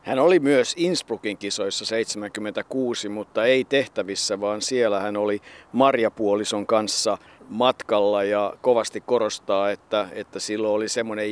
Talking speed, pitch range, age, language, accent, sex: 135 wpm, 100-115 Hz, 50-69, Finnish, native, male